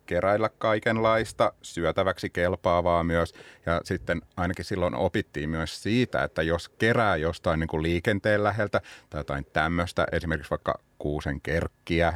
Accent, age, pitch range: native, 30-49, 85-110 Hz